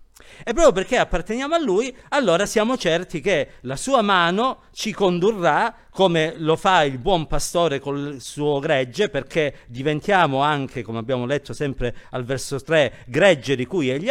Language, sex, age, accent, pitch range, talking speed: Italian, male, 50-69, native, 155-225 Hz, 160 wpm